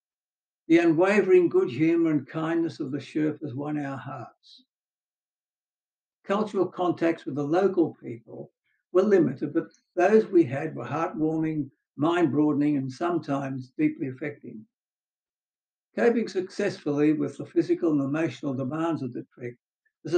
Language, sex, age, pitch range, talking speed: English, male, 60-79, 145-185 Hz, 130 wpm